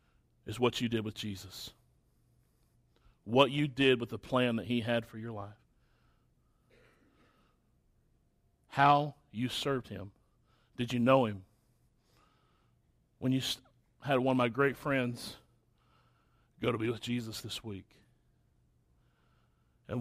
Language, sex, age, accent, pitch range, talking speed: English, male, 30-49, American, 115-130 Hz, 125 wpm